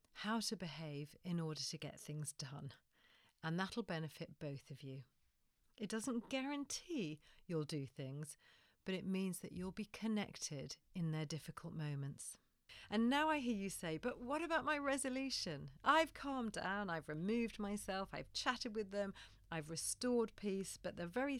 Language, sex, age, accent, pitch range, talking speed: English, female, 40-59, British, 150-215 Hz, 165 wpm